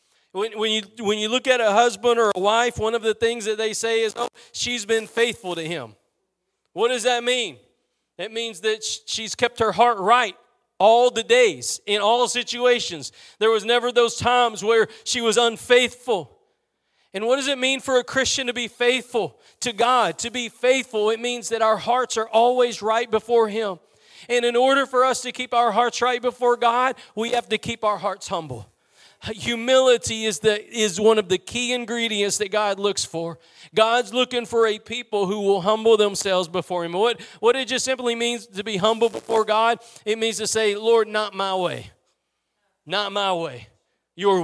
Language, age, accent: English, 40-59, American